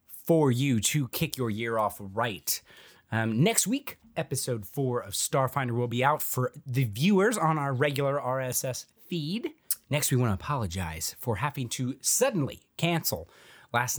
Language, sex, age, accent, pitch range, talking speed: English, male, 20-39, American, 110-160 Hz, 160 wpm